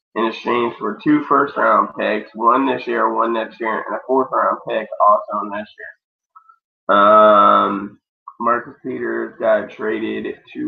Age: 20-39